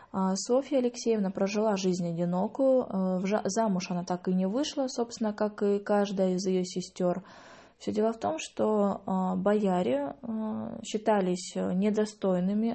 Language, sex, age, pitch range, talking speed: English, female, 20-39, 180-225 Hz, 120 wpm